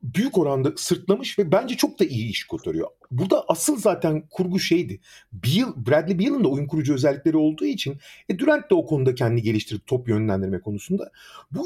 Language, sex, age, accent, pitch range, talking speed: Turkish, male, 40-59, native, 140-215 Hz, 185 wpm